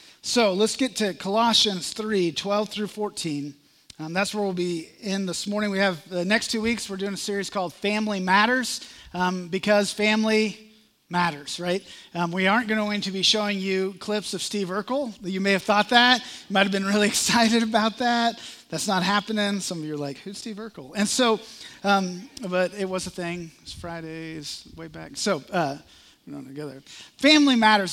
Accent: American